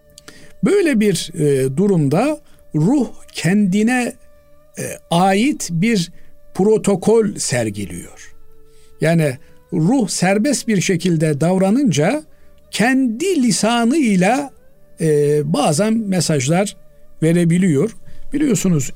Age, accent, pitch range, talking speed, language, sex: 60-79, native, 140-210 Hz, 65 wpm, Turkish, male